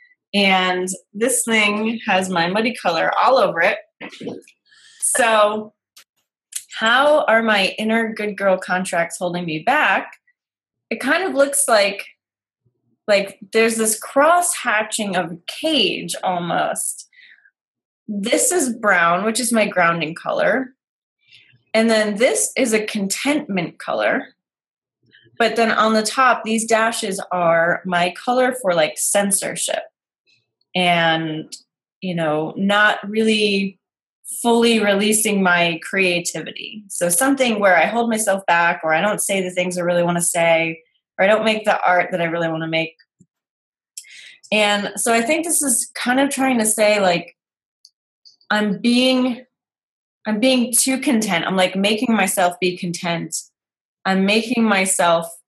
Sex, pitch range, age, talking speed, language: female, 175-230 Hz, 20-39, 140 wpm, English